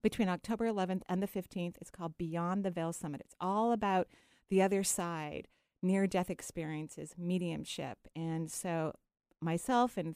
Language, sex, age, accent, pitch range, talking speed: English, female, 40-59, American, 165-215 Hz, 150 wpm